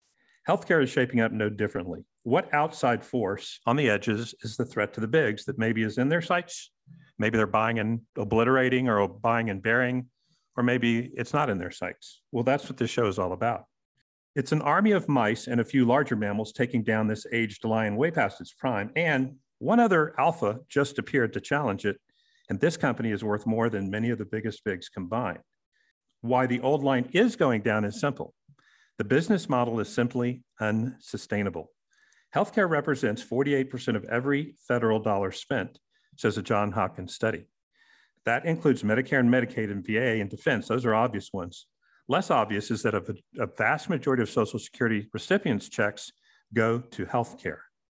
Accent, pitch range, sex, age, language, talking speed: American, 110-130 Hz, male, 50-69, English, 185 wpm